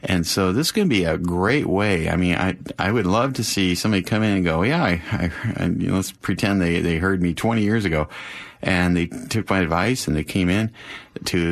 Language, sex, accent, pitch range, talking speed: English, male, American, 90-120 Hz, 250 wpm